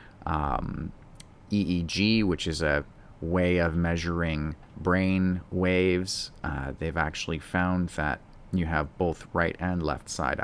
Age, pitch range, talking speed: 30-49, 85-105 Hz, 125 wpm